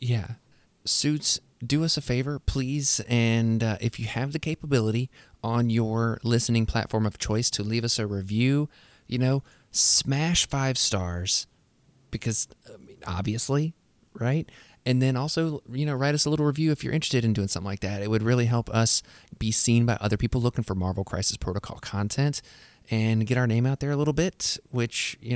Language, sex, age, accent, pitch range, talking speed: English, male, 30-49, American, 110-125 Hz, 190 wpm